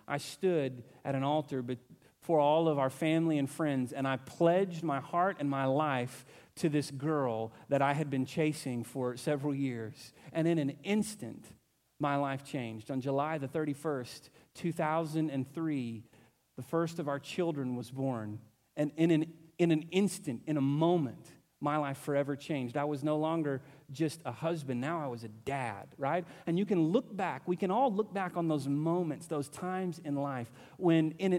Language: English